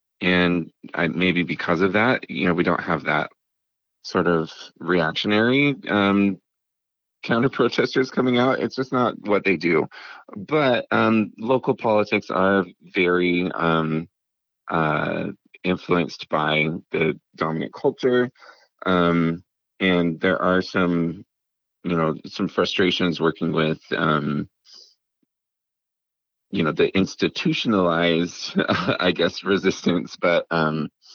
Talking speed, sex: 115 wpm, male